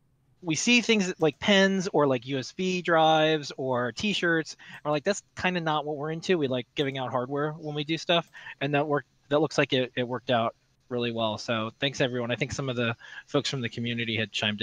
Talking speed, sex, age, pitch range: 230 wpm, male, 20-39, 125-160 Hz